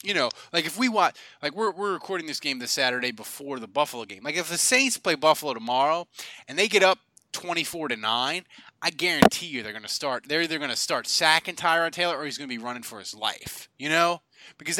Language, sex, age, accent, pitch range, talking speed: English, male, 20-39, American, 135-215 Hz, 245 wpm